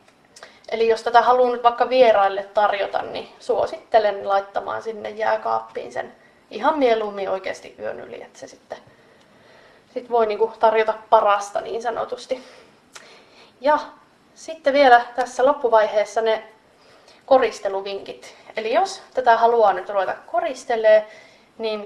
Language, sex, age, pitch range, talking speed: Finnish, female, 20-39, 215-260 Hz, 125 wpm